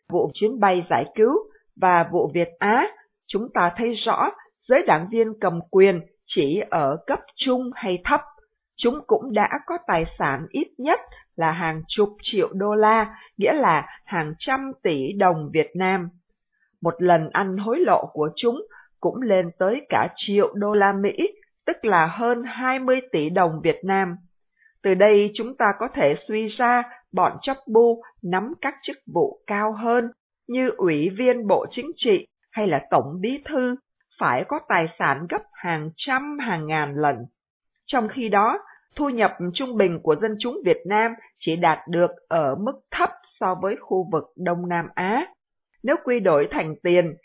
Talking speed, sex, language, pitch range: 175 wpm, female, Vietnamese, 175-255 Hz